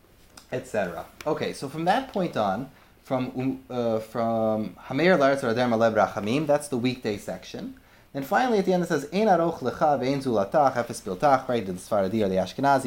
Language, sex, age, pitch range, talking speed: English, male, 30-49, 110-150 Hz, 170 wpm